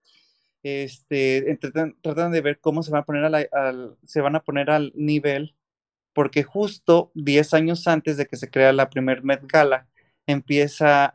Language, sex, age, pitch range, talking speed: Spanish, male, 20-39, 135-160 Hz, 180 wpm